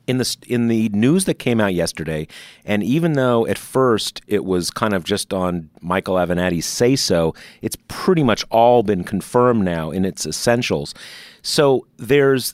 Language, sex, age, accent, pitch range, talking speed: English, male, 40-59, American, 90-115 Hz, 170 wpm